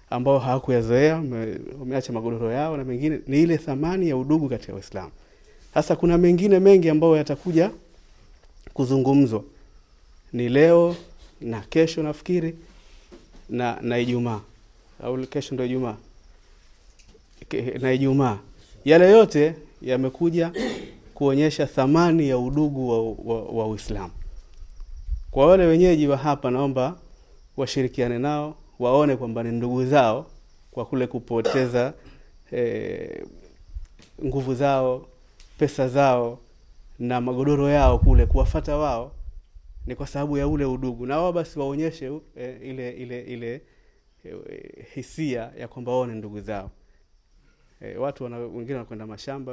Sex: male